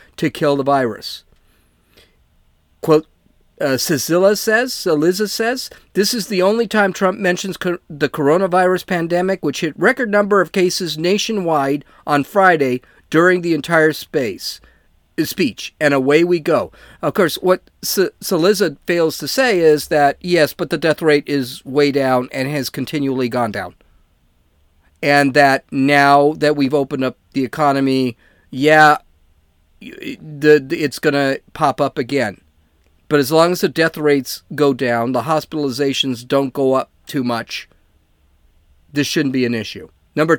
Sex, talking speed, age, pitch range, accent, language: male, 145 wpm, 50-69, 130-180 Hz, American, English